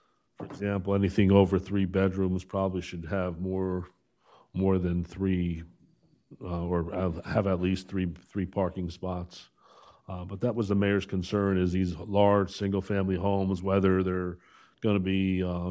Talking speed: 160 wpm